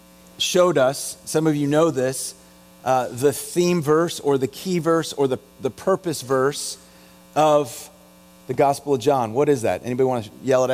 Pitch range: 120-175 Hz